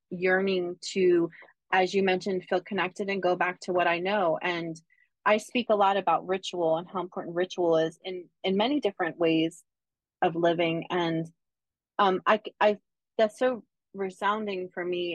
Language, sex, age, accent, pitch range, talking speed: English, female, 30-49, American, 175-205 Hz, 165 wpm